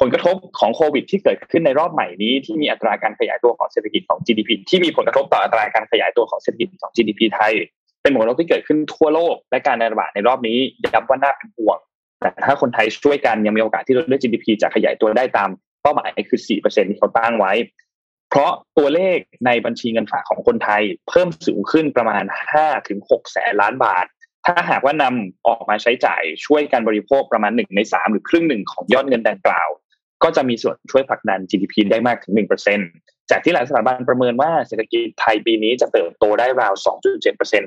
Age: 20-39